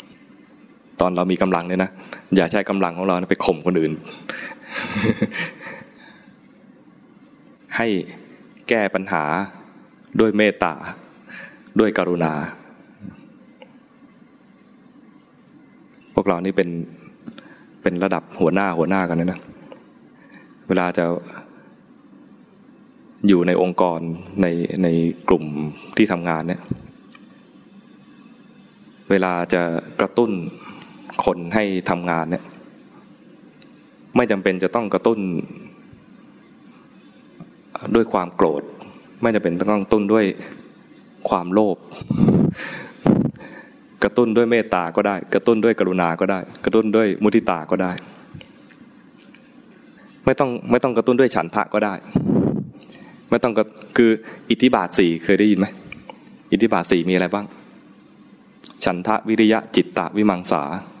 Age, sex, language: 20-39, male, English